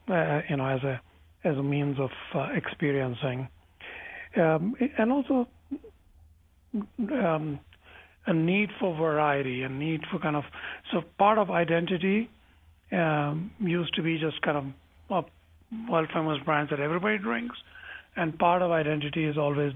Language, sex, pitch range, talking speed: English, male, 125-165 Hz, 145 wpm